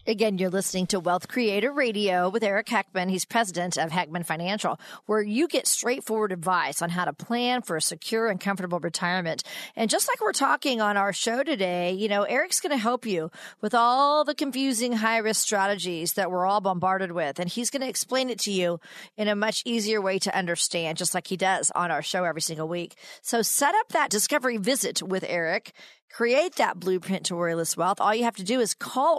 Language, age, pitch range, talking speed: English, 40-59, 180-240 Hz, 210 wpm